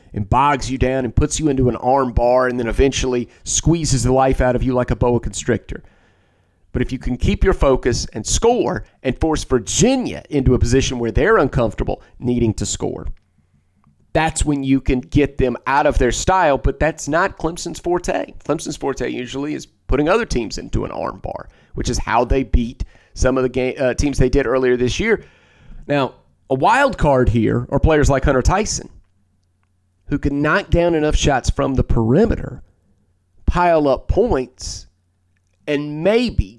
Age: 30-49